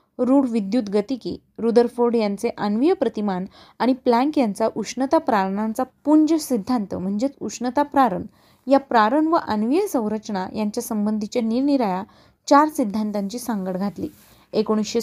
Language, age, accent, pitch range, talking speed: Marathi, 20-39, native, 210-260 Hz, 115 wpm